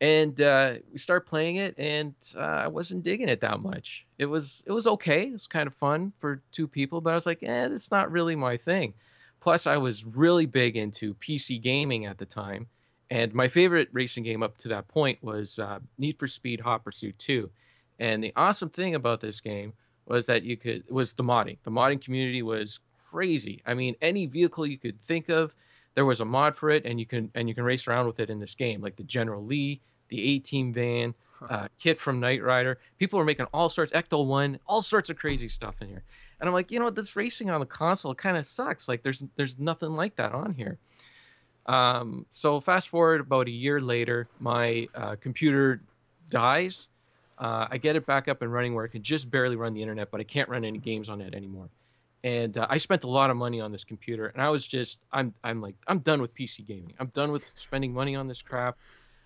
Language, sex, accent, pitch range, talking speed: English, male, American, 115-155 Hz, 230 wpm